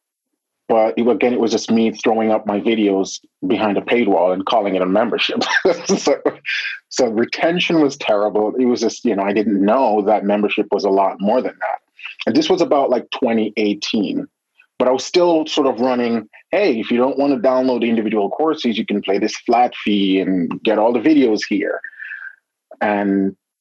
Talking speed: 195 wpm